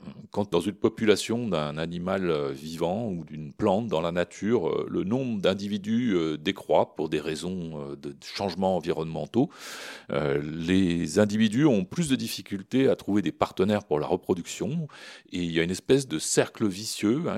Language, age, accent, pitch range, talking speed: French, 40-59, French, 90-125 Hz, 155 wpm